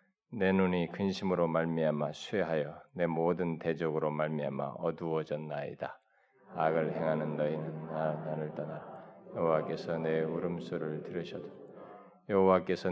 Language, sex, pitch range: Korean, male, 80-95 Hz